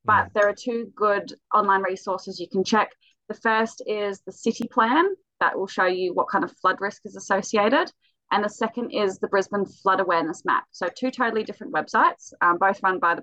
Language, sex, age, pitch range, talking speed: English, female, 20-39, 175-225 Hz, 210 wpm